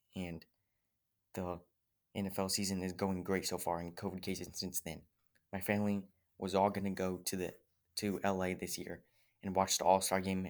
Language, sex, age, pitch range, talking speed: English, male, 20-39, 90-100 Hz, 175 wpm